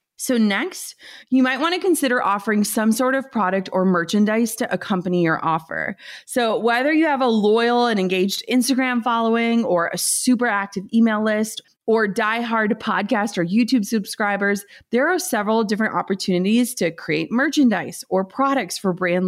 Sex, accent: female, American